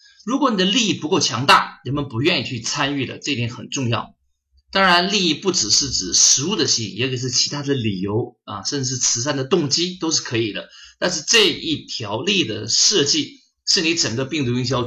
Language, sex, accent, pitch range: Chinese, male, native, 110-155 Hz